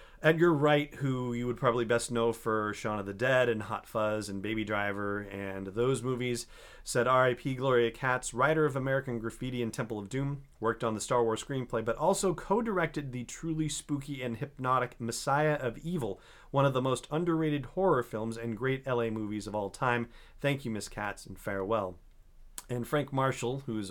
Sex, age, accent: male, 40-59, American